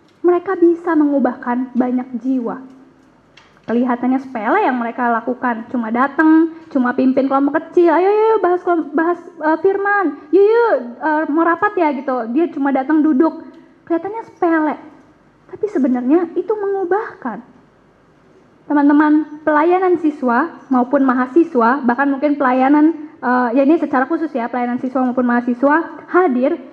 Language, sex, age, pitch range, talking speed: Indonesian, female, 10-29, 255-320 Hz, 130 wpm